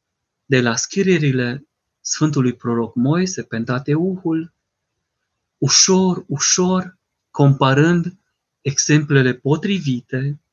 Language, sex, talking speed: Romanian, male, 75 wpm